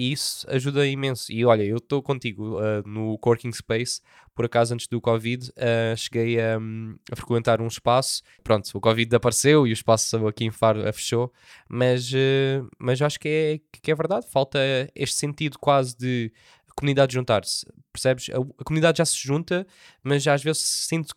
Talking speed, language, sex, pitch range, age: 170 wpm, Portuguese, male, 115-145 Hz, 20-39